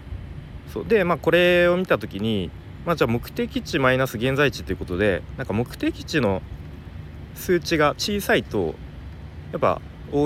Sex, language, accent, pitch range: male, Japanese, native, 80-125 Hz